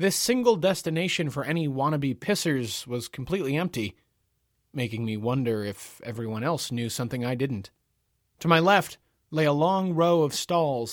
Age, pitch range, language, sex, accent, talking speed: 30-49, 115-145 Hz, English, male, American, 160 wpm